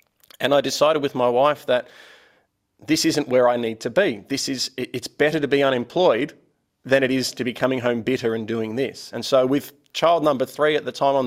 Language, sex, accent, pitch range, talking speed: English, male, Australian, 125-145 Hz, 225 wpm